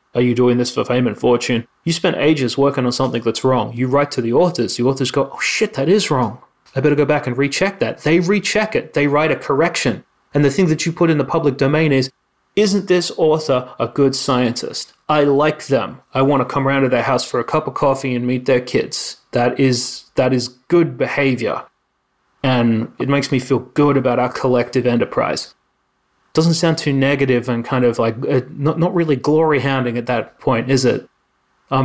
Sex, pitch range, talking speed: male, 125-145 Hz, 215 wpm